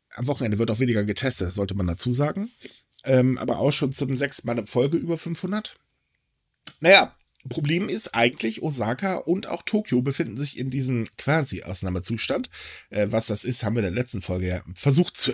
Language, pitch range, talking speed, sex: German, 110-165 Hz, 190 wpm, male